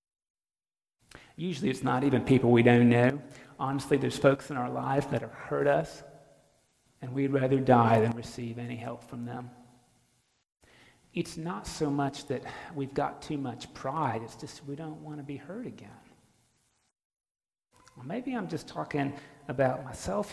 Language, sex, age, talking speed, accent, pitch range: English, male, 40-59, 155 wpm, American, 125-150 Hz